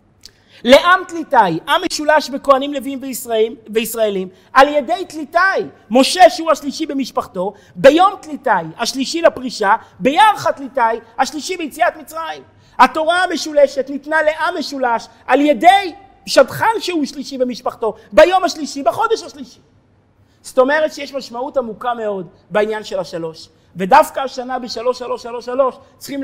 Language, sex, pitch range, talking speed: Hebrew, male, 205-285 Hz, 115 wpm